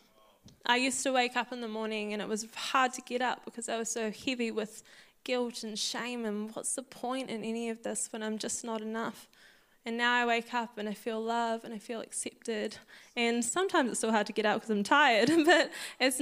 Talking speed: 235 wpm